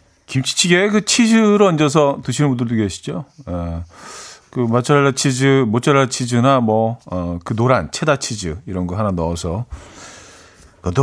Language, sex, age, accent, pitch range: Korean, male, 40-59, native, 105-140 Hz